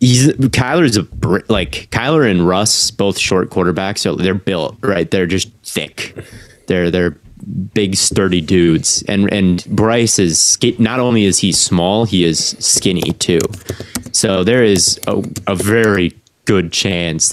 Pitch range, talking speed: 90-110 Hz, 150 wpm